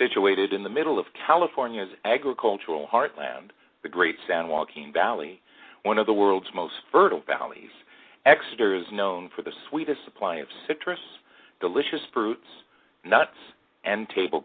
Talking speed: 140 wpm